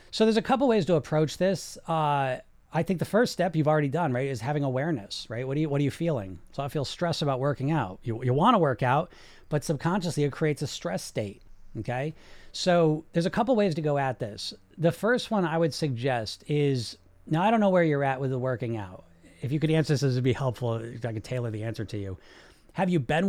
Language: English